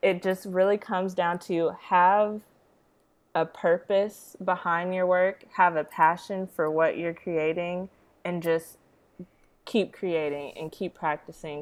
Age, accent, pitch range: 20-39, American, 160-185 Hz